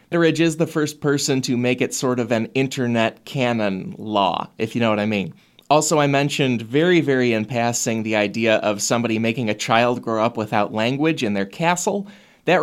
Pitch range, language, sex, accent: 120-165 Hz, English, male, American